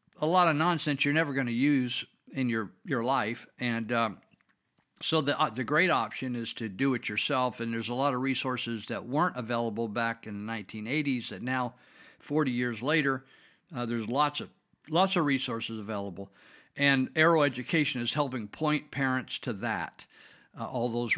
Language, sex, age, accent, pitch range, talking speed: English, male, 50-69, American, 110-135 Hz, 180 wpm